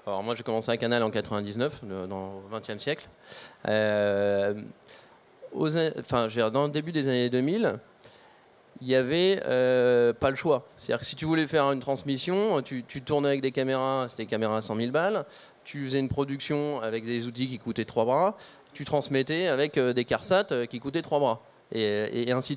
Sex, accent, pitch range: male, French, 115-150 Hz